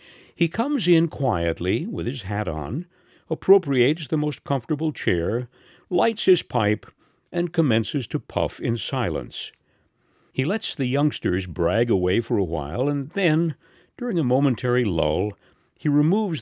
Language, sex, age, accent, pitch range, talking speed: English, male, 60-79, American, 95-155 Hz, 145 wpm